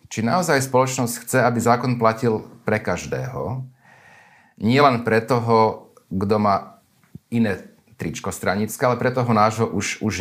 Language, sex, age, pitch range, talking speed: Slovak, male, 40-59, 100-125 Hz, 135 wpm